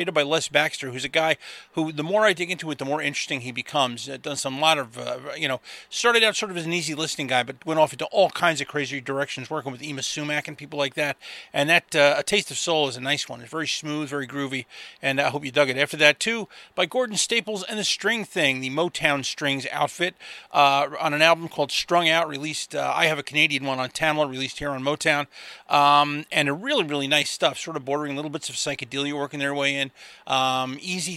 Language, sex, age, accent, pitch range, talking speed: English, male, 30-49, American, 140-180 Hz, 245 wpm